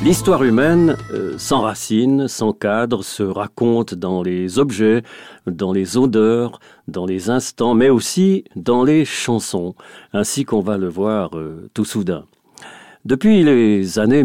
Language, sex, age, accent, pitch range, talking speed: French, male, 50-69, French, 100-125 Hz, 135 wpm